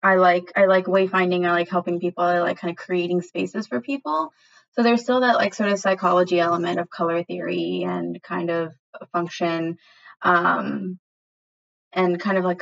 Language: English